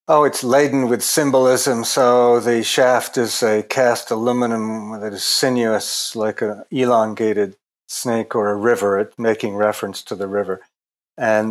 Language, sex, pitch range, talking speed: English, male, 105-125 Hz, 145 wpm